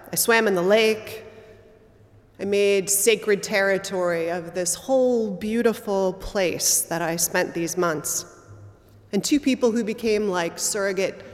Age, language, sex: 30-49, English, female